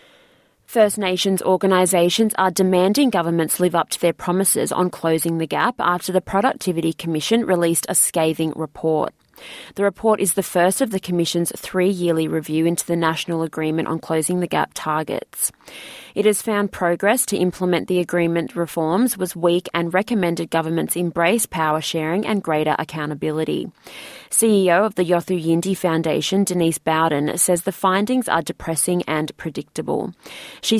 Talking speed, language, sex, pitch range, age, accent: 150 wpm, English, female, 160-185 Hz, 20-39, Australian